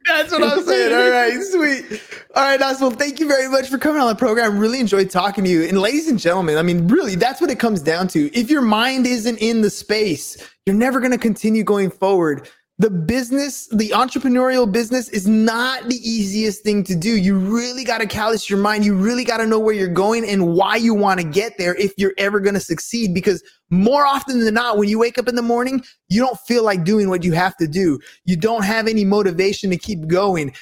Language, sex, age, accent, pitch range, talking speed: English, male, 20-39, American, 195-245 Hz, 235 wpm